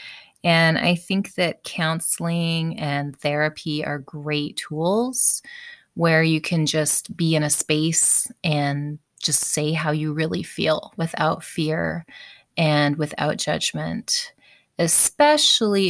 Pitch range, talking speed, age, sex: 155-195 Hz, 115 wpm, 20-39, female